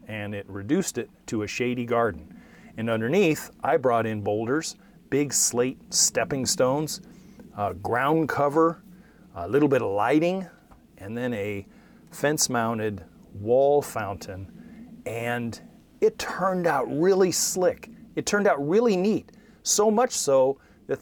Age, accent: 40-59, American